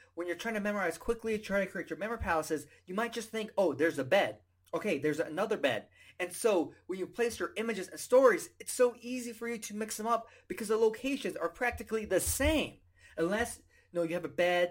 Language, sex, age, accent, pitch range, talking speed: English, male, 20-39, American, 150-215 Hz, 225 wpm